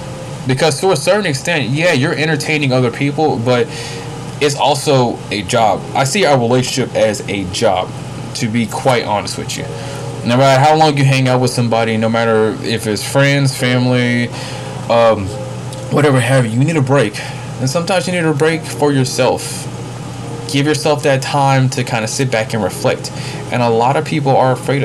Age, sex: 20-39, male